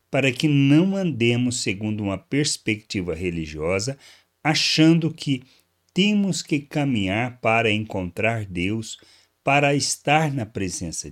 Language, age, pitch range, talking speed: Portuguese, 60-79, 90-135 Hz, 110 wpm